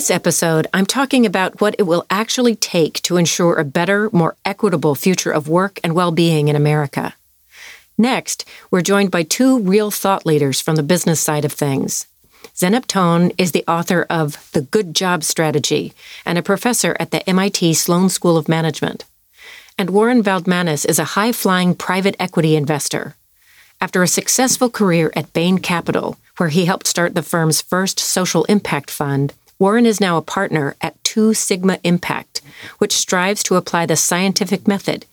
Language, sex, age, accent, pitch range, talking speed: English, female, 40-59, American, 160-205 Hz, 170 wpm